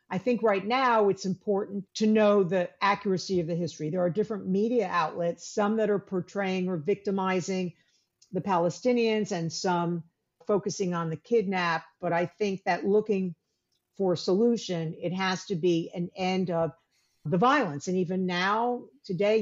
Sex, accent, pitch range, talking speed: female, American, 175-215 Hz, 165 wpm